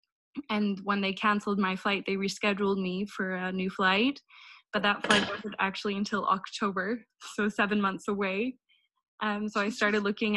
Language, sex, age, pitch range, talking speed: Dutch, female, 10-29, 190-210 Hz, 170 wpm